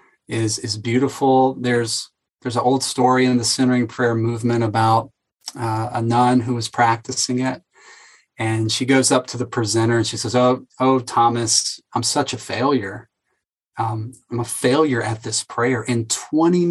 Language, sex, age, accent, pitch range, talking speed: English, male, 30-49, American, 115-135 Hz, 170 wpm